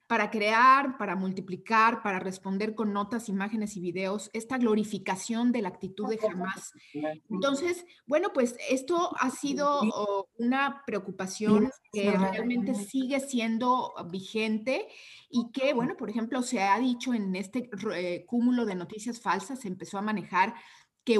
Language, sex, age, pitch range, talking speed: Spanish, female, 30-49, 195-250 Hz, 140 wpm